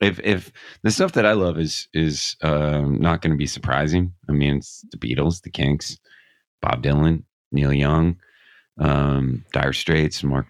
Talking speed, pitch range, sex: 175 wpm, 75-80 Hz, male